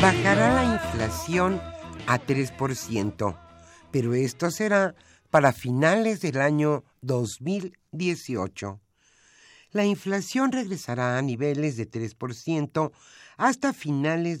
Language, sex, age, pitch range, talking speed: Spanish, male, 50-69, 115-175 Hz, 90 wpm